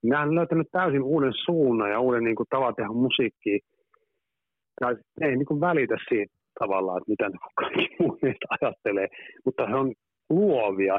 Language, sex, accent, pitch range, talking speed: Finnish, male, native, 110-160 Hz, 155 wpm